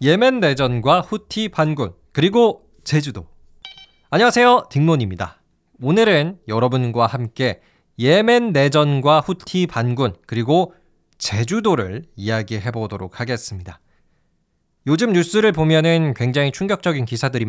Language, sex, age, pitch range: Korean, male, 20-39, 115-185 Hz